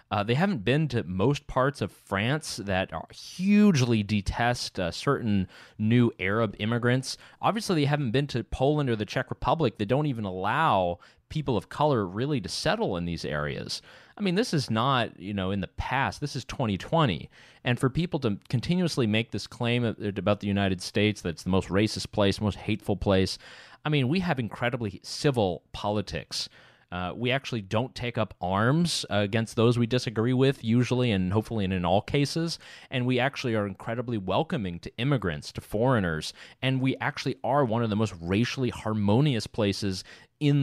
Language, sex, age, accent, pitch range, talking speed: English, male, 30-49, American, 100-130 Hz, 185 wpm